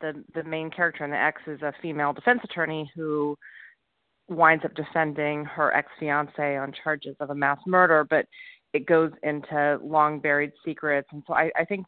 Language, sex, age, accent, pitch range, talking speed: English, female, 30-49, American, 145-165 Hz, 180 wpm